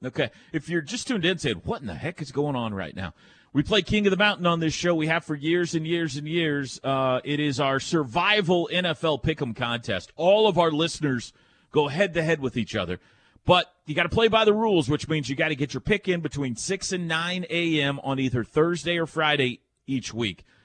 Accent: American